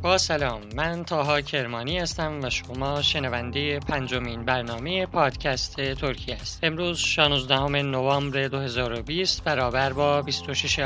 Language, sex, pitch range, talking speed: Persian, male, 140-170 Hz, 115 wpm